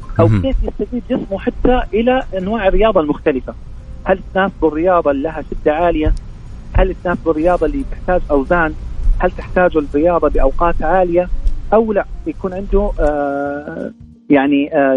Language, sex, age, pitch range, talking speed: Arabic, male, 40-59, 150-220 Hz, 130 wpm